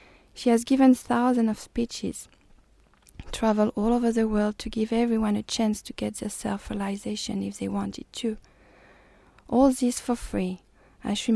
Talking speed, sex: 150 wpm, female